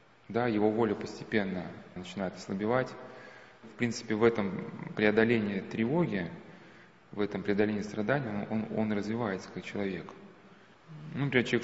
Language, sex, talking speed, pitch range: Russian, male, 130 wpm, 100-115 Hz